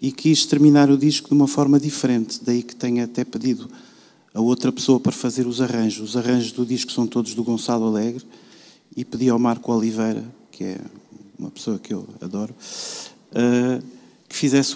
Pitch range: 120-135 Hz